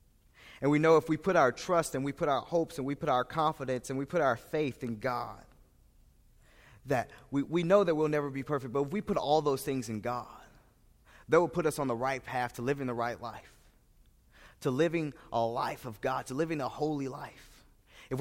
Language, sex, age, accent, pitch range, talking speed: English, male, 20-39, American, 120-150 Hz, 225 wpm